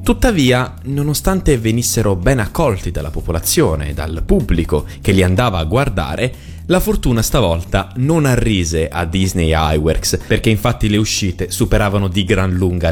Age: 30-49